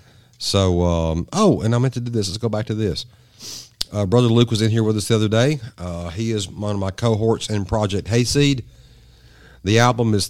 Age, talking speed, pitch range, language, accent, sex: 50-69, 220 wpm, 90-120 Hz, English, American, male